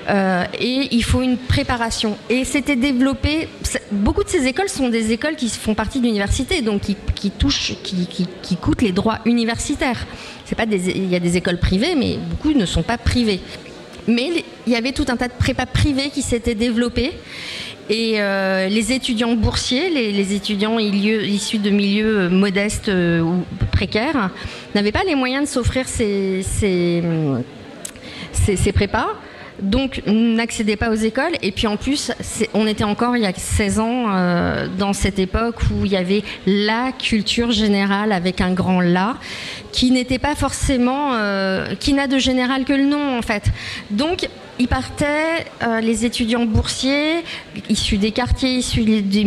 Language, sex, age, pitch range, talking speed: French, female, 40-59, 200-255 Hz, 180 wpm